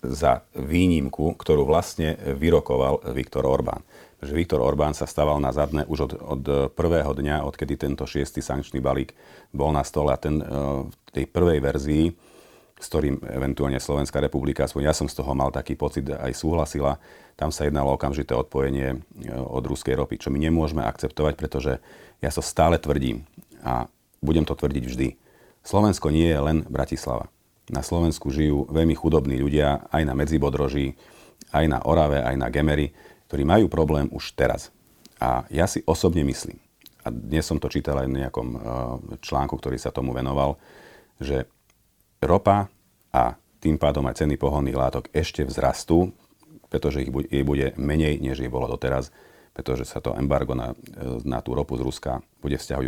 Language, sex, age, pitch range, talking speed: Slovak, male, 40-59, 65-75 Hz, 165 wpm